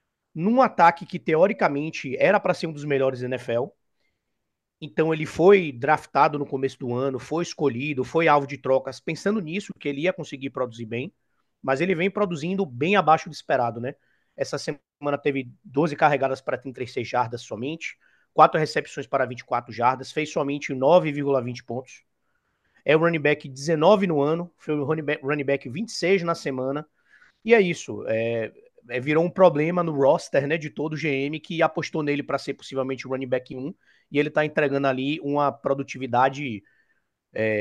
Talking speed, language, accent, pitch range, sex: 170 wpm, Portuguese, Brazilian, 130-165 Hz, male